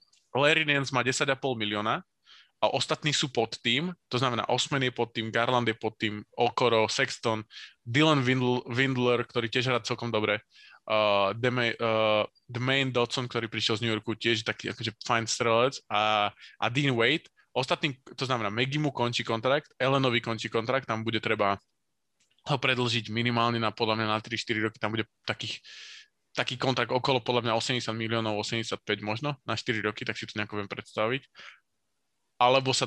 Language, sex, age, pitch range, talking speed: Slovak, male, 20-39, 115-130 Hz, 165 wpm